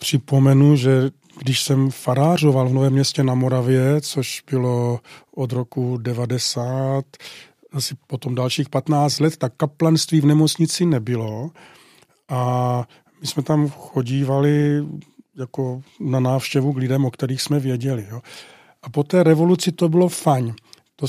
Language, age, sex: Czech, 40-59, male